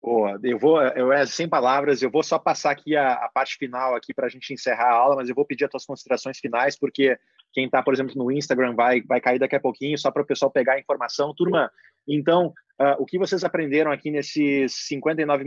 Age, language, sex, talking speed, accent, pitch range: 20-39, Portuguese, male, 235 wpm, Brazilian, 135-160 Hz